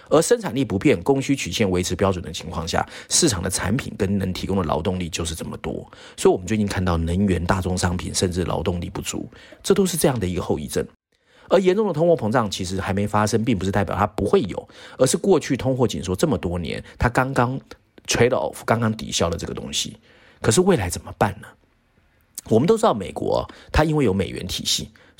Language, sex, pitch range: Chinese, male, 90-125 Hz